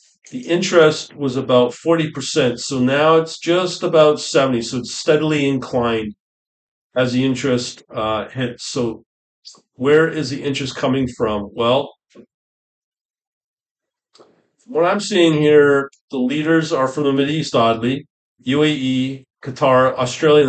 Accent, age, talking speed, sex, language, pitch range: American, 40-59, 125 wpm, male, English, 120-145 Hz